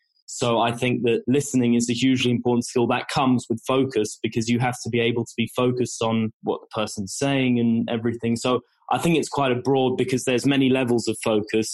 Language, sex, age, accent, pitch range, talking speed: English, male, 10-29, British, 120-130 Hz, 220 wpm